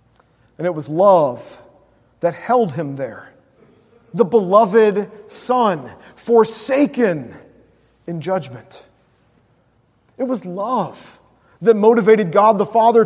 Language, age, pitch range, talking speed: English, 40-59, 175-240 Hz, 100 wpm